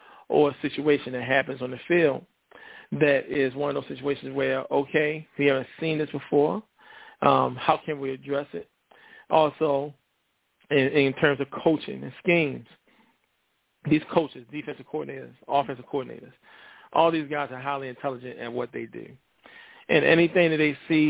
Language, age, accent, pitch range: English, 40-59, American, 130-150 Hz